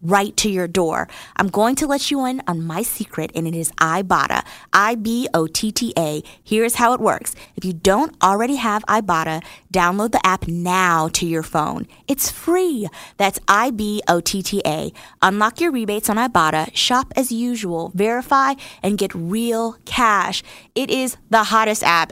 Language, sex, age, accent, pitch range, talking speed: English, female, 20-39, American, 175-235 Hz, 155 wpm